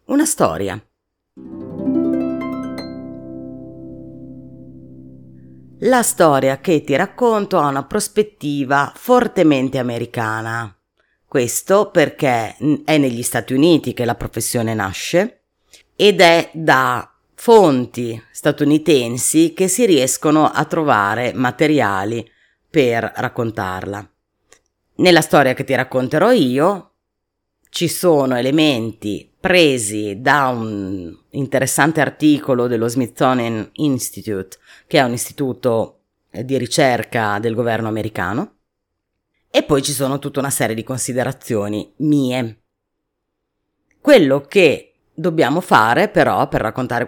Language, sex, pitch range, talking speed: Italian, female, 105-150 Hz, 100 wpm